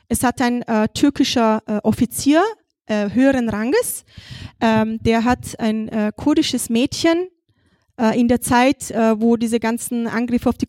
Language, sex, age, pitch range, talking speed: German, female, 20-39, 235-285 Hz, 155 wpm